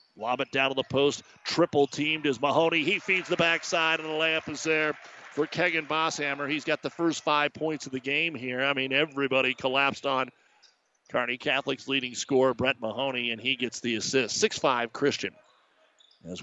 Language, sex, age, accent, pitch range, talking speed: English, male, 50-69, American, 120-140 Hz, 185 wpm